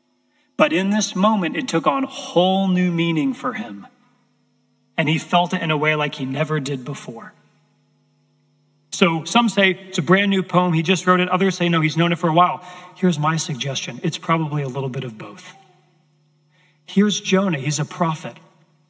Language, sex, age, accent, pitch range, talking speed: English, male, 40-59, American, 160-190 Hz, 195 wpm